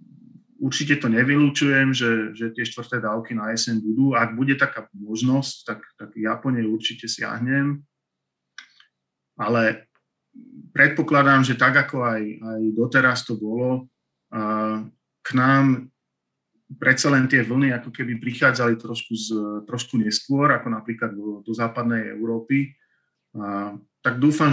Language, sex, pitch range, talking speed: Slovak, male, 110-125 Hz, 130 wpm